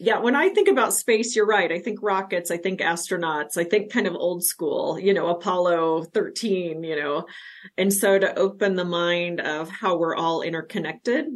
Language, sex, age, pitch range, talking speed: English, female, 30-49, 160-210 Hz, 195 wpm